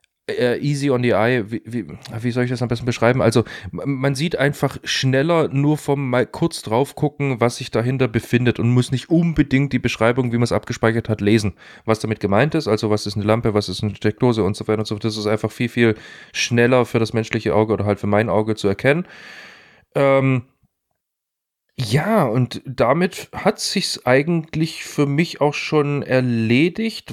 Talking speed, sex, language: 195 wpm, male, German